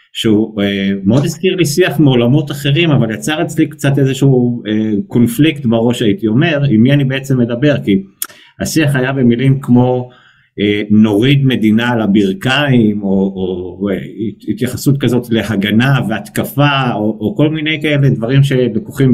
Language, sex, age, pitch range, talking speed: Hebrew, male, 50-69, 100-125 Hz, 145 wpm